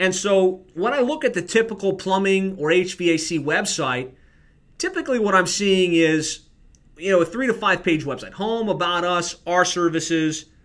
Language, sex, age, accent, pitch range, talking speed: English, male, 30-49, American, 155-185 Hz, 170 wpm